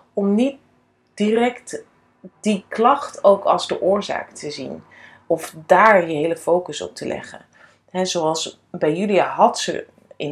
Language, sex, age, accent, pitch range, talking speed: Dutch, female, 30-49, Dutch, 165-210 Hz, 150 wpm